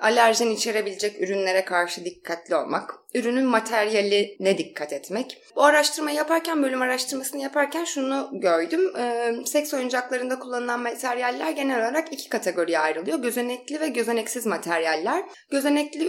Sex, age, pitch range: female, 20-39, 210-285 Hz